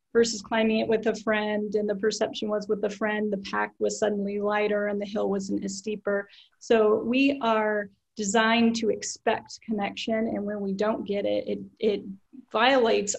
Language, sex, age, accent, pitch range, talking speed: English, female, 30-49, American, 205-230 Hz, 180 wpm